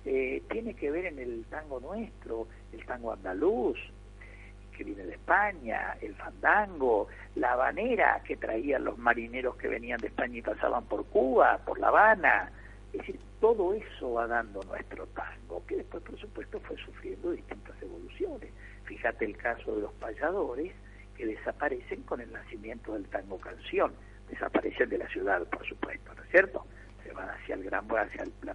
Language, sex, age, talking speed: Spanish, male, 60-79, 170 wpm